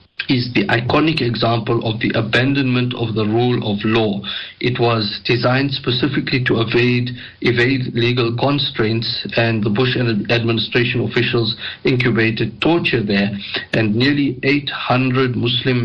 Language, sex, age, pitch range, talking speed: English, male, 50-69, 110-130 Hz, 125 wpm